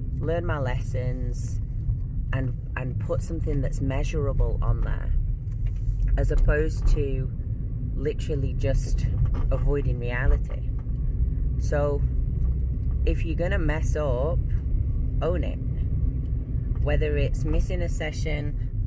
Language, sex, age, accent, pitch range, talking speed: English, female, 30-49, British, 110-130 Hz, 100 wpm